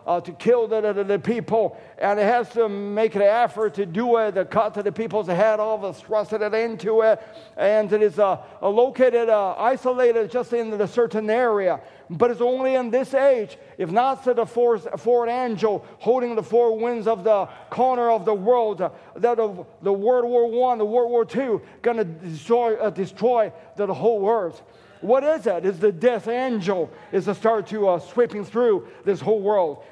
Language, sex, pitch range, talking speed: English, male, 205-240 Hz, 210 wpm